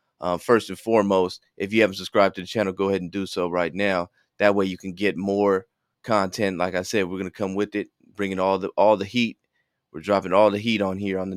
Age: 30-49